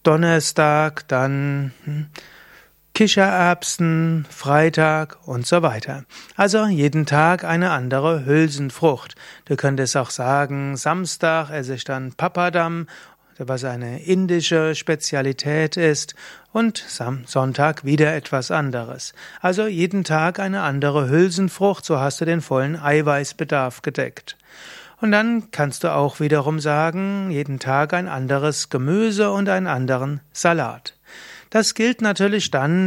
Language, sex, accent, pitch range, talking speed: German, male, German, 140-180 Hz, 120 wpm